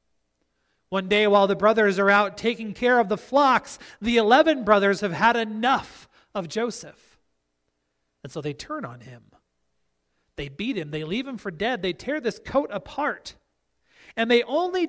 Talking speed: 170 wpm